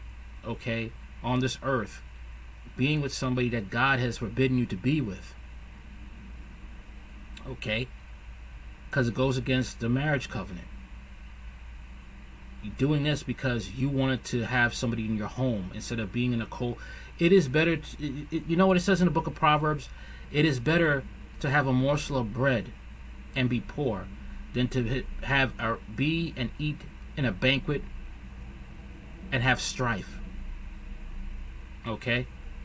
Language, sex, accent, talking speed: English, male, American, 150 wpm